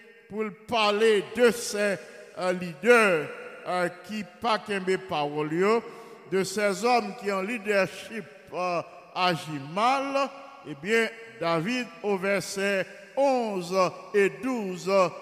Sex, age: male, 60-79